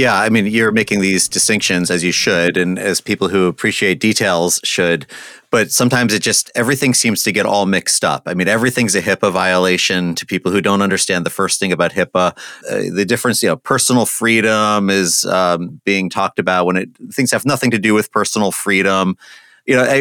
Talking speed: 205 wpm